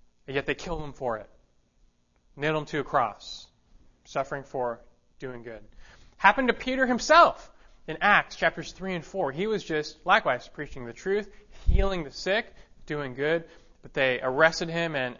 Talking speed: 165 wpm